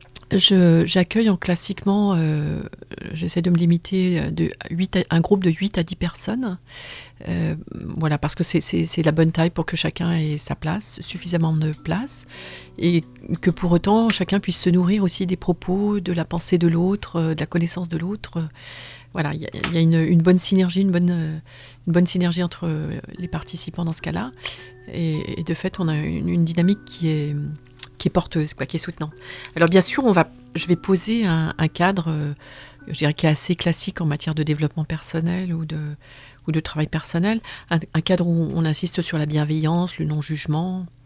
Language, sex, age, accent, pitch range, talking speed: French, female, 40-59, French, 150-180 Hz, 195 wpm